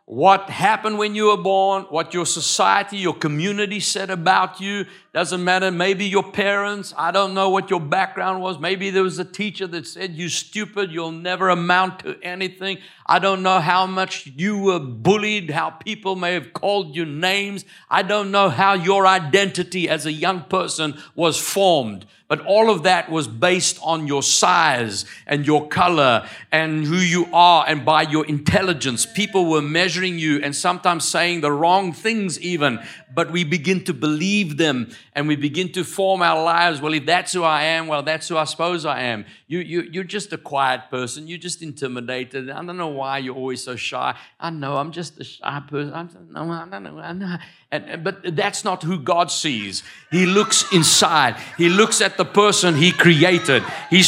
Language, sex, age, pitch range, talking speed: English, male, 60-79, 160-195 Hz, 195 wpm